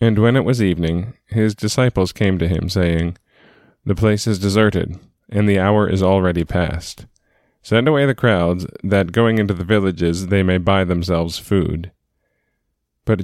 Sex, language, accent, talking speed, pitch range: male, English, American, 165 wpm, 90-110 Hz